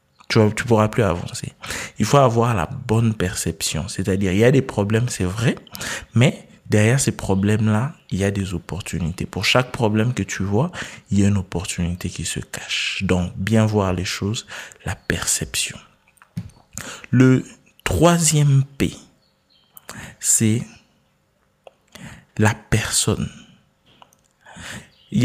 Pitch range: 95-130 Hz